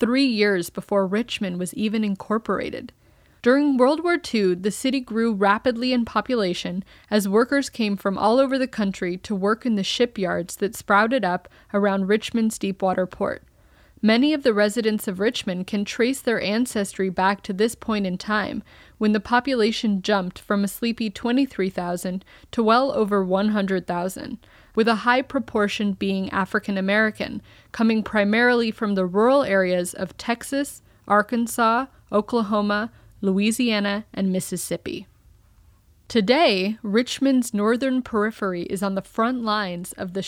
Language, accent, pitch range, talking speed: English, American, 195-235 Hz, 140 wpm